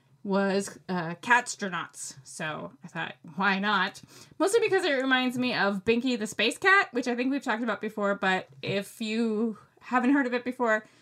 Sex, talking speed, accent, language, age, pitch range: female, 185 wpm, American, English, 20-39, 195-250 Hz